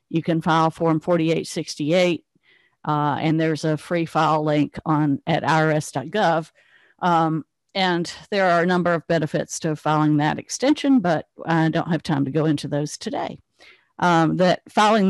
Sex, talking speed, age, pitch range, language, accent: female, 160 wpm, 50-69, 155-180 Hz, English, American